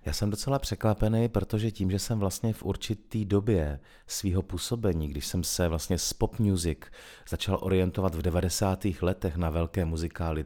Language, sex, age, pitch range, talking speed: Czech, male, 40-59, 85-110 Hz, 165 wpm